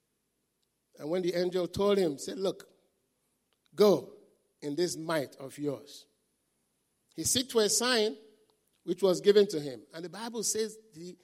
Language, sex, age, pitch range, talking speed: English, male, 50-69, 175-235 Hz, 150 wpm